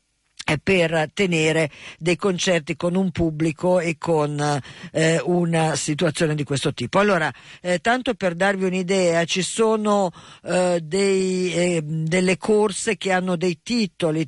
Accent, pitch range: native, 165-200 Hz